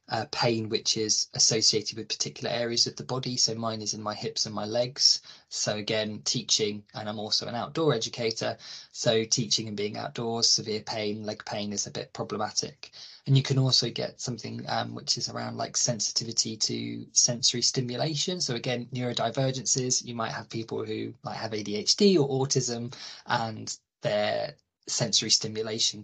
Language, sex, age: English, male, 20-39